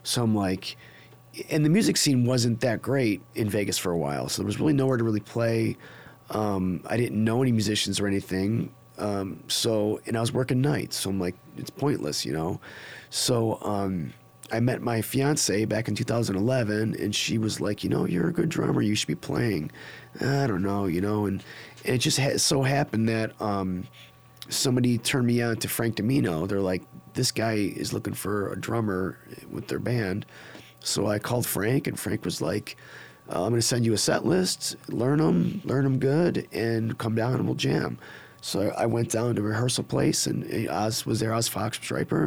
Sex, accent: male, American